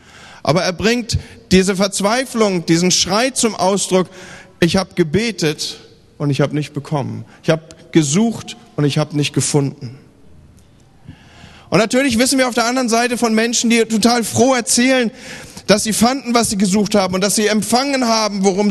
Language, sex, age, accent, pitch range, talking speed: German, male, 40-59, German, 165-225 Hz, 165 wpm